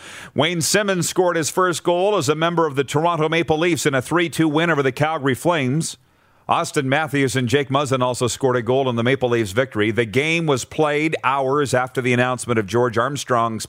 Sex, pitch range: male, 115-155 Hz